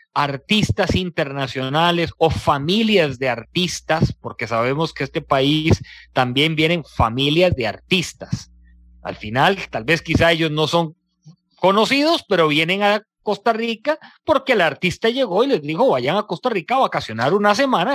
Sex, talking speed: male, 150 wpm